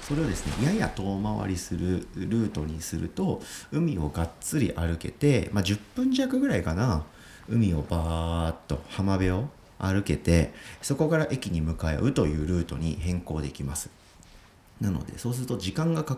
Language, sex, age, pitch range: Japanese, male, 40-59, 75-120 Hz